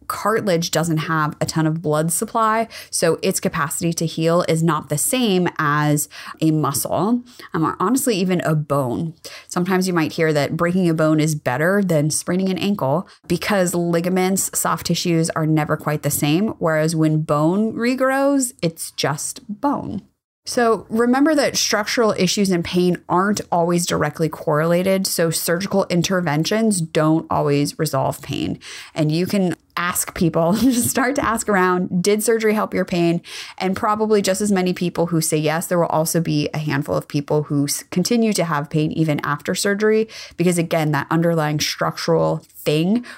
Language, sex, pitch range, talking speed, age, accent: English, female, 155-200 Hz, 165 wpm, 20-39, American